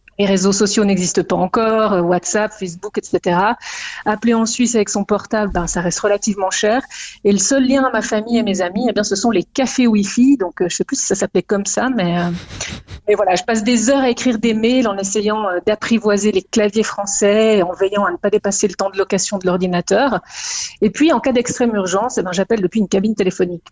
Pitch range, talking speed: 190-225 Hz, 225 wpm